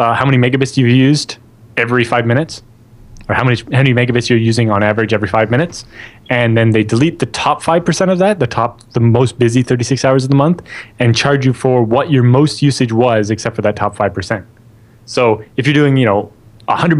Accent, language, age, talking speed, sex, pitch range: American, English, 20-39, 220 wpm, male, 115-130 Hz